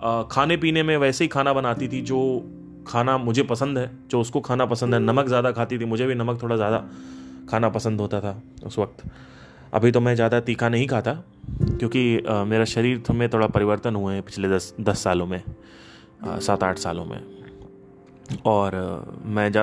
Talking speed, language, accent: 175 wpm, Hindi, native